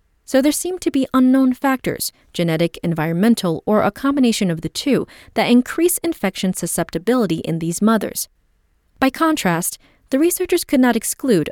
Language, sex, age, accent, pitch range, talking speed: English, female, 30-49, American, 170-260 Hz, 140 wpm